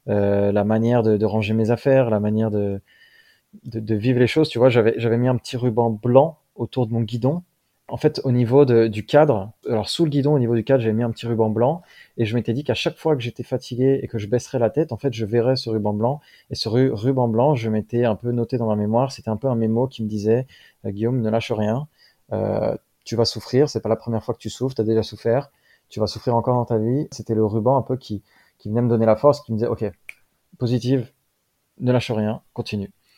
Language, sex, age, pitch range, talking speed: French, male, 20-39, 105-125 Hz, 260 wpm